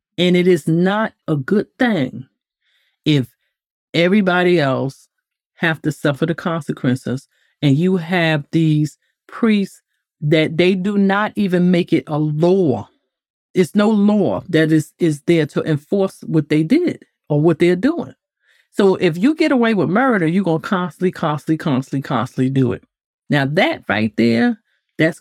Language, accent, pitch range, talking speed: English, American, 150-195 Hz, 155 wpm